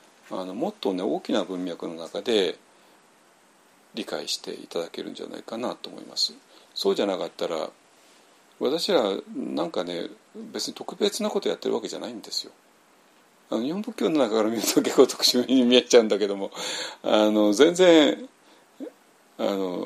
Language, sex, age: Japanese, male, 40-59